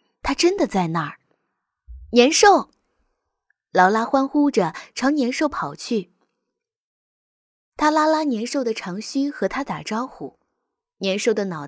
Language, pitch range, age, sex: Chinese, 180-275 Hz, 20-39, female